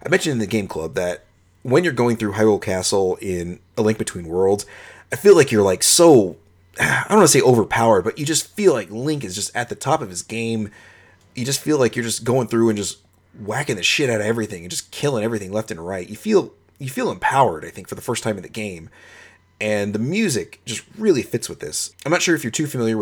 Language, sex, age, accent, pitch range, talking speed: English, male, 30-49, American, 95-120 Hz, 265 wpm